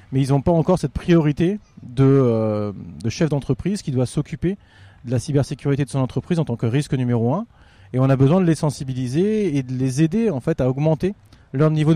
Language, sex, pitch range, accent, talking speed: French, male, 125-165 Hz, French, 205 wpm